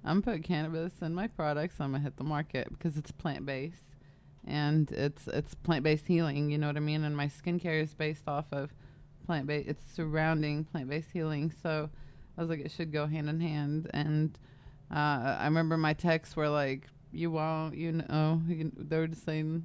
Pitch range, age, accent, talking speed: 150-180 Hz, 20-39, American, 190 wpm